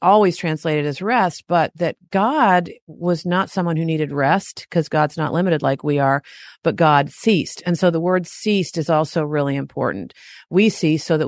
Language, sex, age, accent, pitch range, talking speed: English, female, 40-59, American, 155-195 Hz, 190 wpm